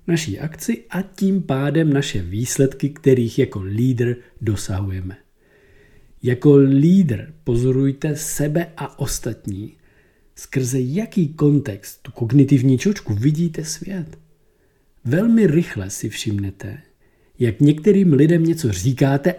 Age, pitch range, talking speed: 50-69, 120-170 Hz, 105 wpm